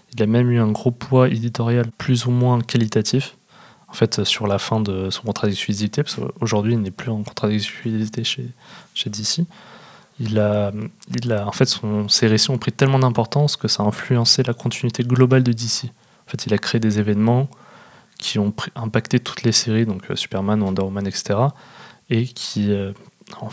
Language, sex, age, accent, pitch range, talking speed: French, male, 20-39, French, 105-120 Hz, 190 wpm